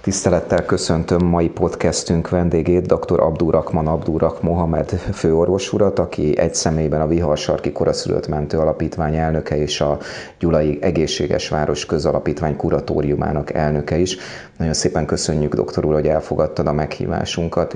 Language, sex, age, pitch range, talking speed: Hungarian, male, 30-49, 75-85 Hz, 125 wpm